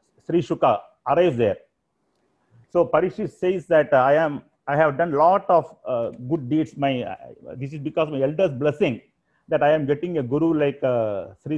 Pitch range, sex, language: 140-175 Hz, male, Tamil